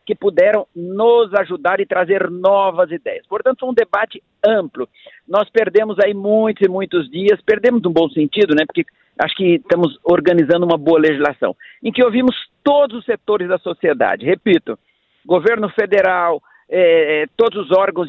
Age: 50-69